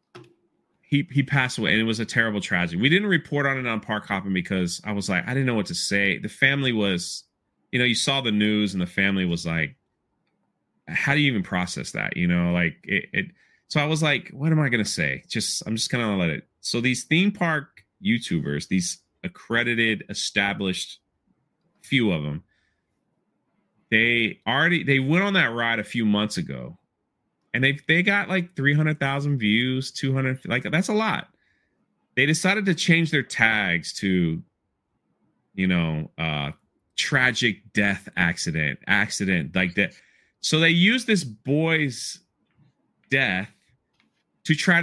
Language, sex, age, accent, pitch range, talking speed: English, male, 30-49, American, 105-155 Hz, 175 wpm